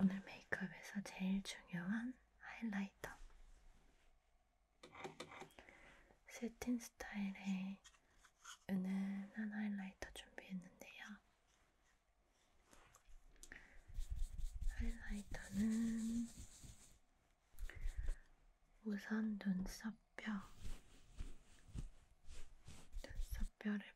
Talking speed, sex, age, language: 35 wpm, female, 20-39, English